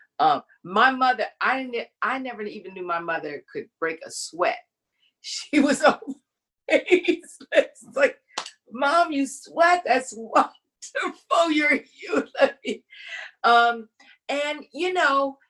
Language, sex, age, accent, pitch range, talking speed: English, female, 50-69, American, 185-295 Hz, 120 wpm